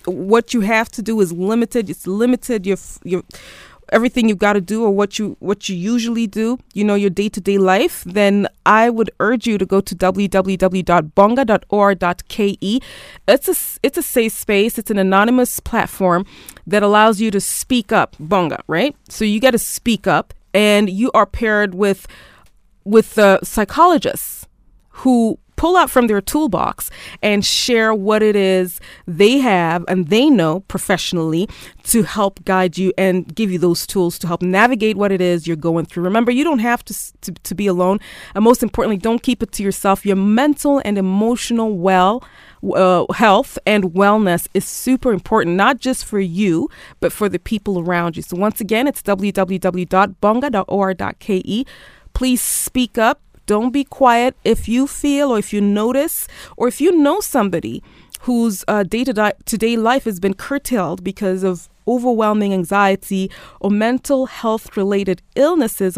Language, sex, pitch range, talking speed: English, female, 190-235 Hz, 165 wpm